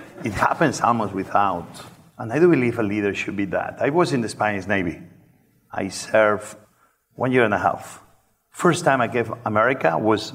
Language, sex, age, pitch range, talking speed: English, male, 50-69, 105-120 Hz, 185 wpm